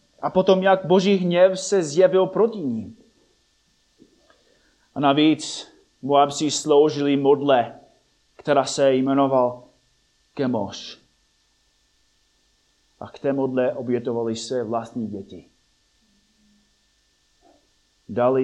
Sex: male